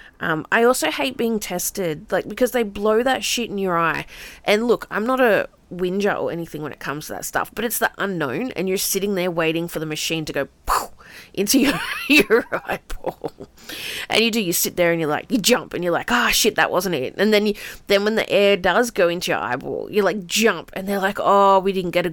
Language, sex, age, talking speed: English, female, 20-39, 240 wpm